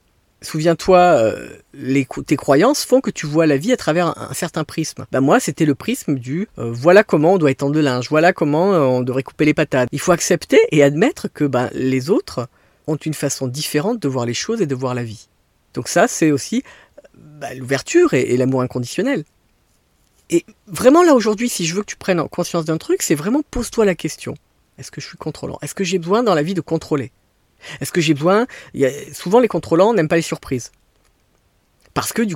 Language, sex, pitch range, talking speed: French, female, 125-180 Hz, 230 wpm